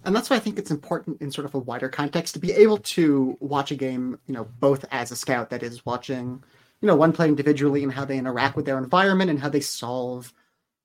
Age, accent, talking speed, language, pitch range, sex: 30-49, American, 250 wpm, English, 130-155 Hz, male